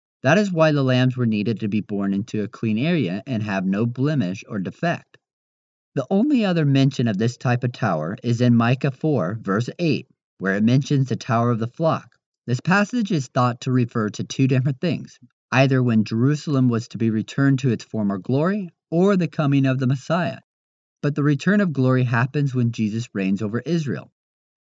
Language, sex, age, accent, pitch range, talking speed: English, male, 40-59, American, 115-150 Hz, 195 wpm